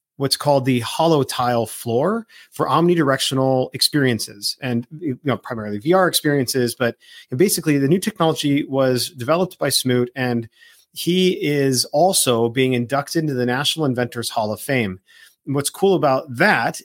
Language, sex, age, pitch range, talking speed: English, male, 40-59, 120-150 Hz, 150 wpm